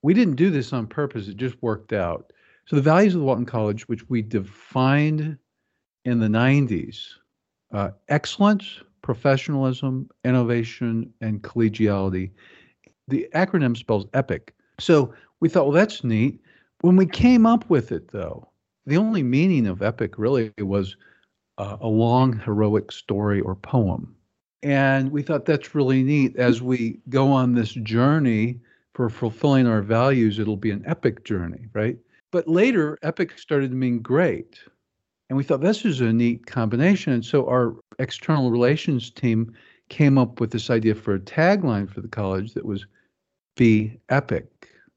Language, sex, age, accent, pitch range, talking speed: English, male, 50-69, American, 110-145 Hz, 155 wpm